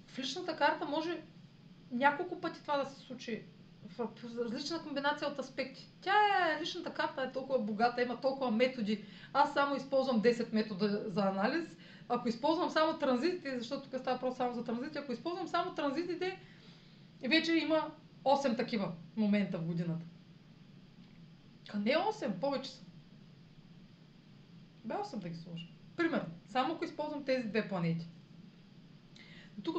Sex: female